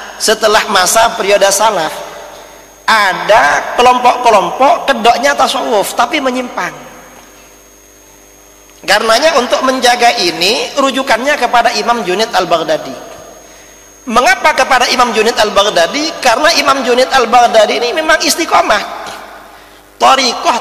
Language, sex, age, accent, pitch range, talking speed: English, male, 40-59, Indonesian, 150-230 Hz, 95 wpm